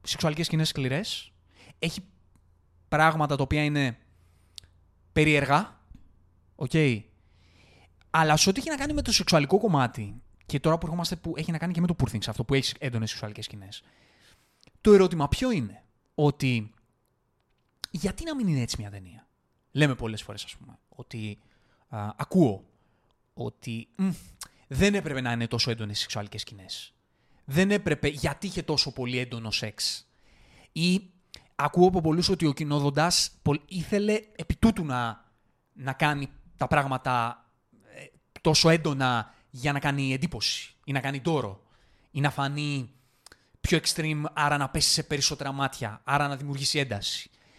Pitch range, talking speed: 115-160 Hz, 140 wpm